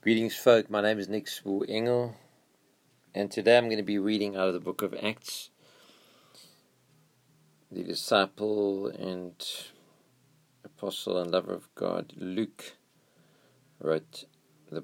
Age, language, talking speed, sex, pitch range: 50-69, English, 130 wpm, male, 100-120 Hz